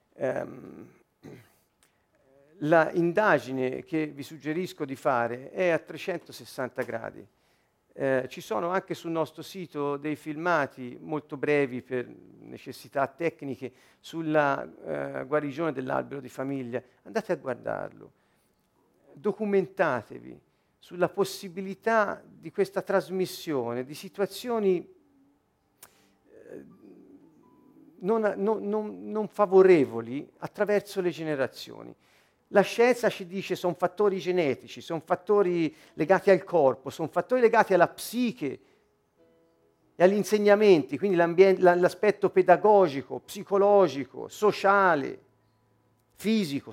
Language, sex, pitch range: Italian, male, 145-205 Hz